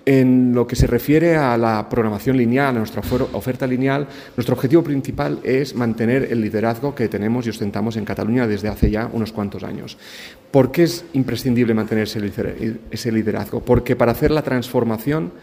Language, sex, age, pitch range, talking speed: Spanish, male, 40-59, 110-130 Hz, 170 wpm